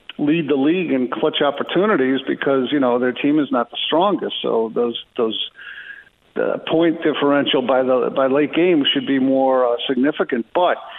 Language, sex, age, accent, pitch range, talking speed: English, male, 50-69, American, 130-170 Hz, 175 wpm